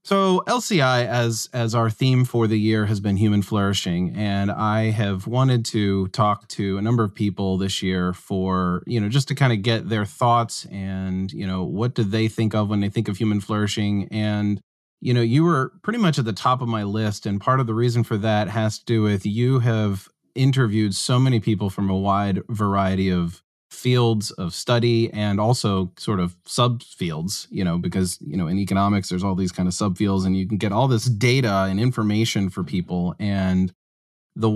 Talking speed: 205 wpm